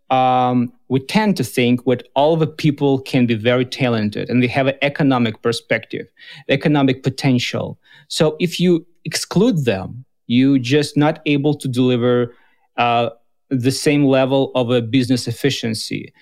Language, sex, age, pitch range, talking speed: English, male, 40-59, 130-195 Hz, 145 wpm